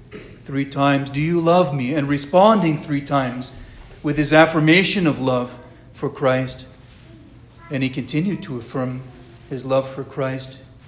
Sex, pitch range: male, 125-165 Hz